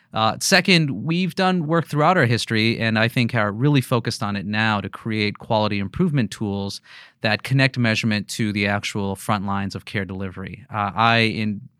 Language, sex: English, male